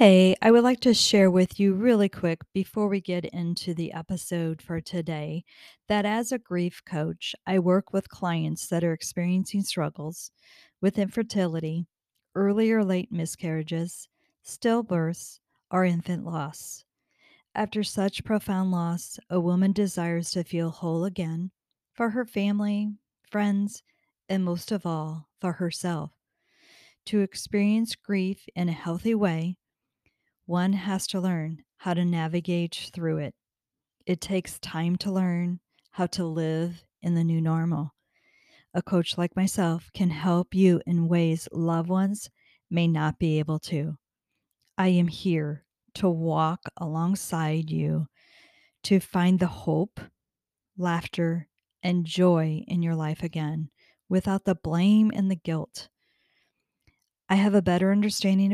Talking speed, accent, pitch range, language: 140 wpm, American, 165-195 Hz, English